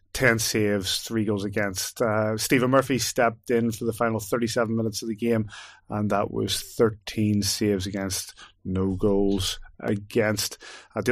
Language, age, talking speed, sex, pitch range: English, 30-49, 155 wpm, male, 100-115 Hz